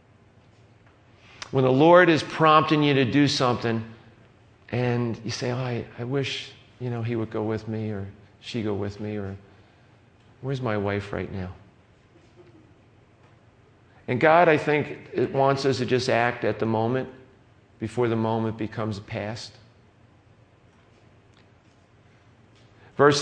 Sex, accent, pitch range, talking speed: male, American, 115-145 Hz, 135 wpm